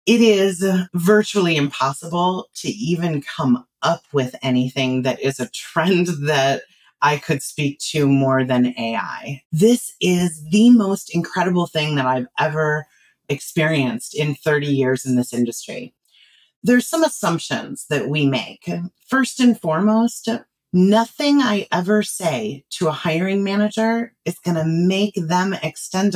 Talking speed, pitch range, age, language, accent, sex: 140 wpm, 145-210 Hz, 30-49, English, American, female